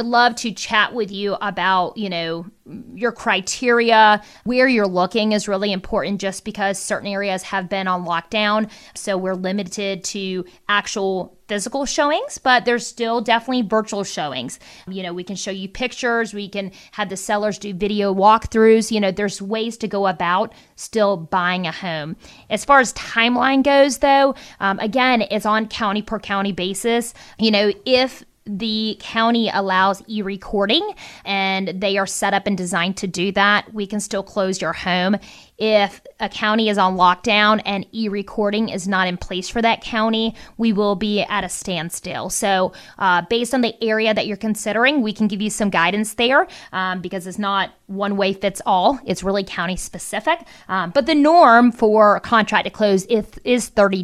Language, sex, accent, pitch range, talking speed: English, female, American, 195-225 Hz, 180 wpm